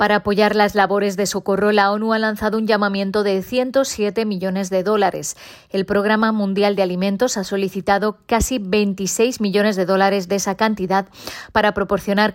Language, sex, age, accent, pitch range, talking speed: Spanish, female, 20-39, Spanish, 190-215 Hz, 165 wpm